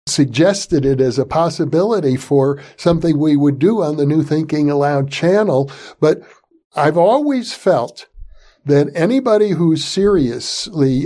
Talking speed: 130 wpm